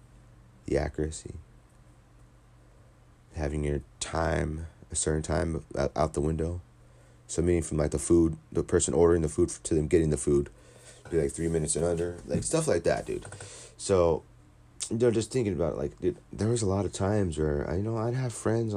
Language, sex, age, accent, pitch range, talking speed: English, male, 30-49, American, 70-95 Hz, 195 wpm